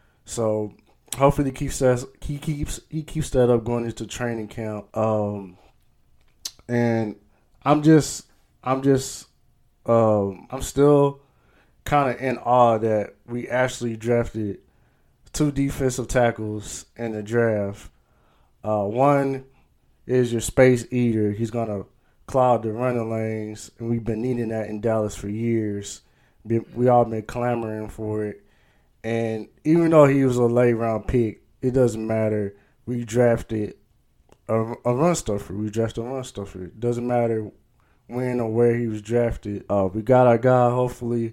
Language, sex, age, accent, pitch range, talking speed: English, male, 20-39, American, 110-125 Hz, 140 wpm